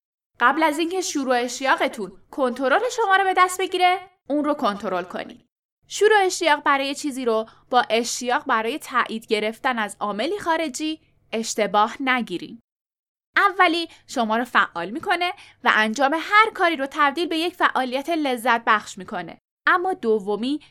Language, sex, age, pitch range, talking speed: Persian, female, 10-29, 225-325 Hz, 140 wpm